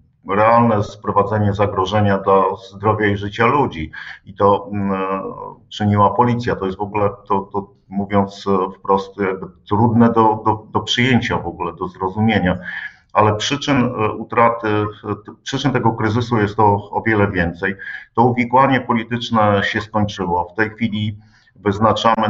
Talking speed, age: 135 wpm, 50-69